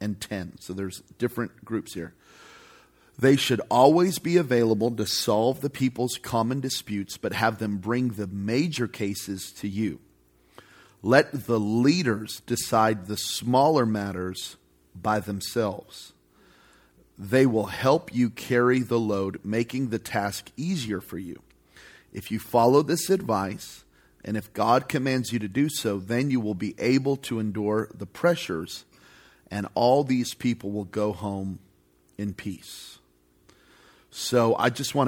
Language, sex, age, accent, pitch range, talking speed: English, male, 40-59, American, 95-120 Hz, 145 wpm